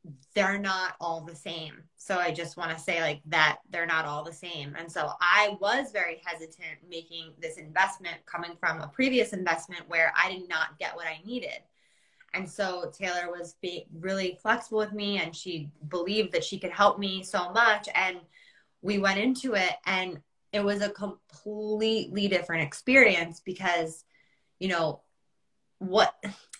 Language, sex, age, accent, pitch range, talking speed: English, female, 20-39, American, 170-210 Hz, 170 wpm